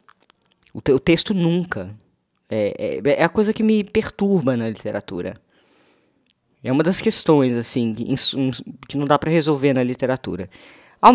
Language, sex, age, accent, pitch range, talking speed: Portuguese, female, 20-39, Brazilian, 130-180 Hz, 140 wpm